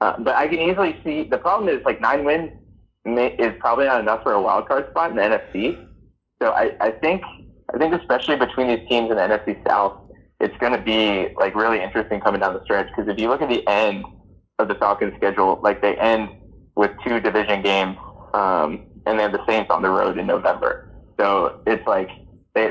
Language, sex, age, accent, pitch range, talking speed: English, male, 20-39, American, 100-120 Hz, 215 wpm